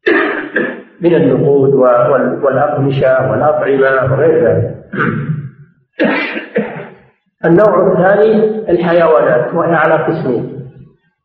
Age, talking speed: 50-69, 65 wpm